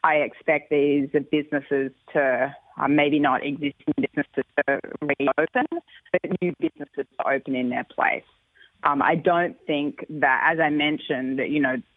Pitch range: 145-175 Hz